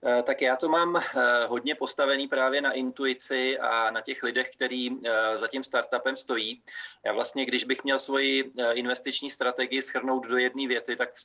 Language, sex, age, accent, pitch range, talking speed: Czech, male, 30-49, native, 125-135 Hz, 170 wpm